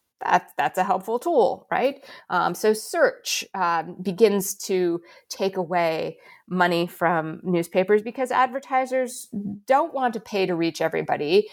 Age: 30-49